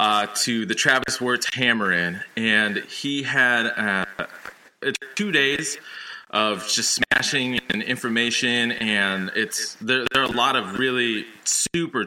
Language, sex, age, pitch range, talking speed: English, male, 20-39, 105-125 Hz, 135 wpm